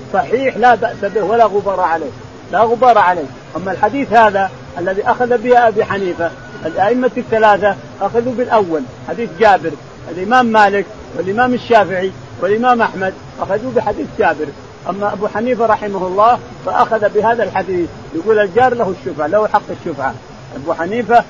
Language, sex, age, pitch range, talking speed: Arabic, male, 50-69, 180-240 Hz, 140 wpm